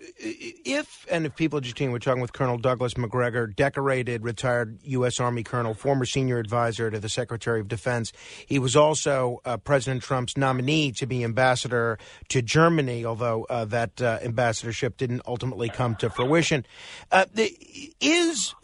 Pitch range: 130-175 Hz